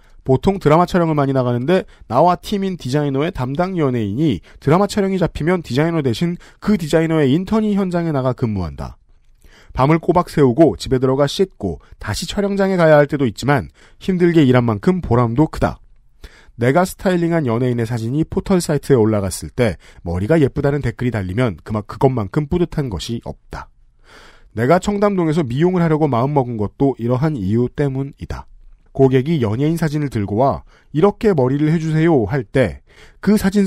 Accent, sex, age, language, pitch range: native, male, 40-59, Korean, 120-170 Hz